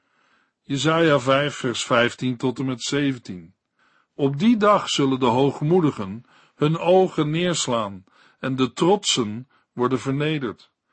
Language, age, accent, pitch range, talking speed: Dutch, 50-69, Dutch, 135-180 Hz, 120 wpm